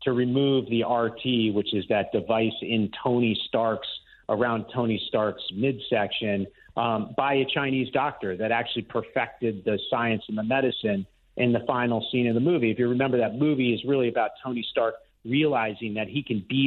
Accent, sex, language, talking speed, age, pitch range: American, male, English, 180 wpm, 40-59, 115-140 Hz